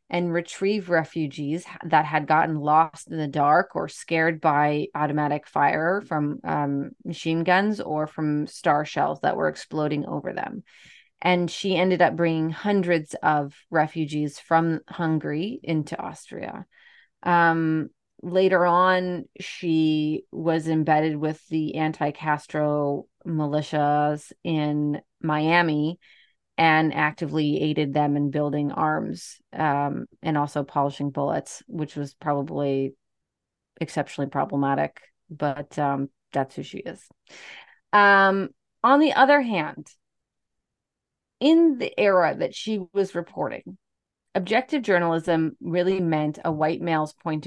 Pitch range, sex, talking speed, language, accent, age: 150-180 Hz, female, 120 wpm, English, American, 30-49